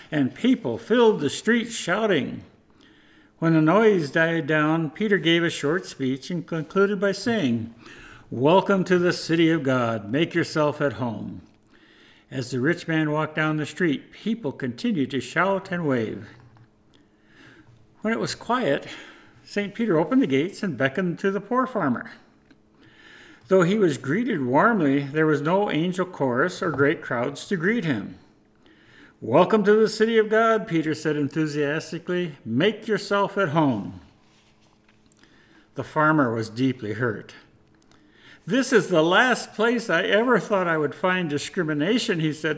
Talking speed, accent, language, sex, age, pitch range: 150 wpm, American, English, male, 60-79, 145-210 Hz